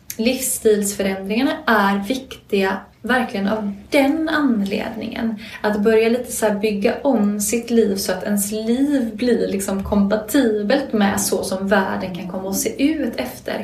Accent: Swedish